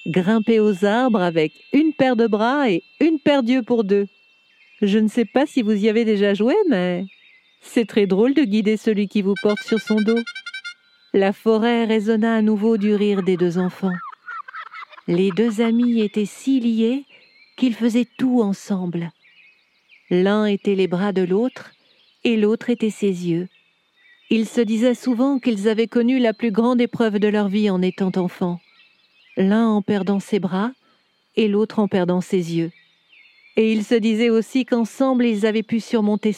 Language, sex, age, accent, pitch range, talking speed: French, female, 50-69, French, 195-240 Hz, 175 wpm